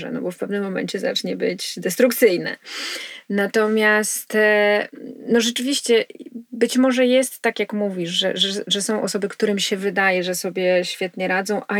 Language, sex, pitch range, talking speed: Polish, female, 195-230 Hz, 145 wpm